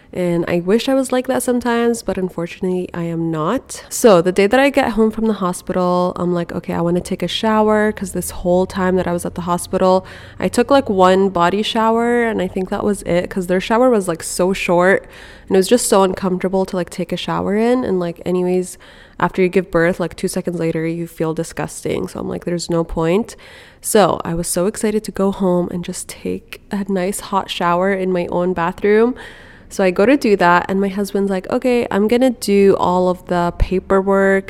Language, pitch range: English, 175-215 Hz